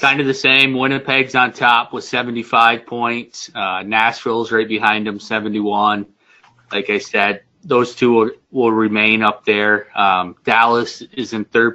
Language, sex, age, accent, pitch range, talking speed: English, male, 20-39, American, 105-125 Hz, 160 wpm